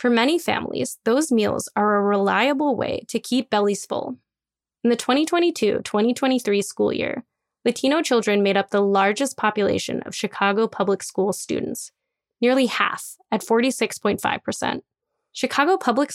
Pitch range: 210-265 Hz